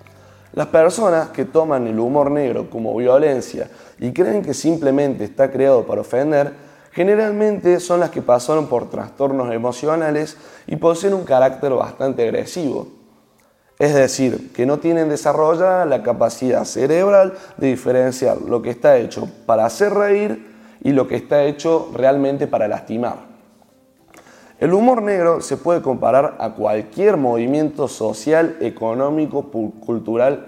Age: 20-39